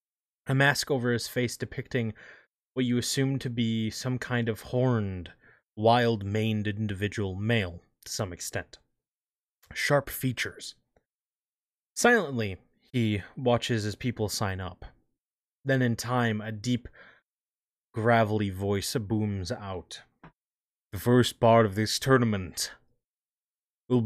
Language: English